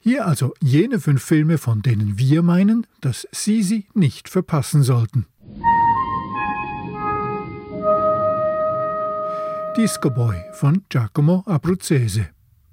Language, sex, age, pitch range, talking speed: German, male, 50-69, 125-180 Hz, 95 wpm